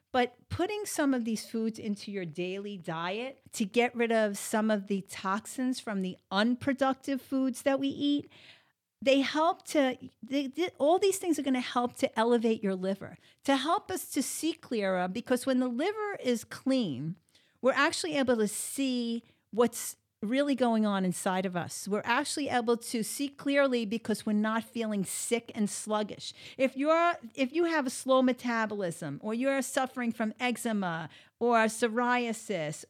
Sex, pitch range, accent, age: female, 210-275 Hz, American, 50-69